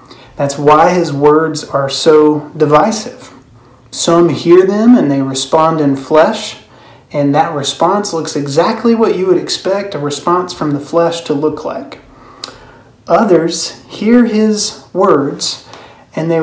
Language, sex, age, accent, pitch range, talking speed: English, male, 30-49, American, 140-170 Hz, 140 wpm